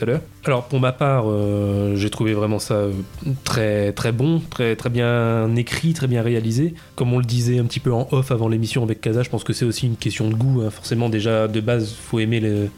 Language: French